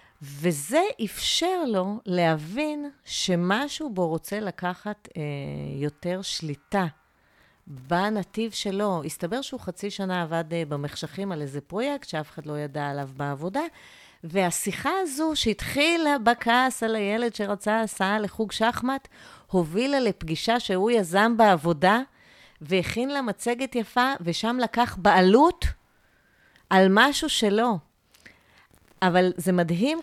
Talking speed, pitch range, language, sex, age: 110 wpm, 165-230 Hz, Hebrew, female, 30-49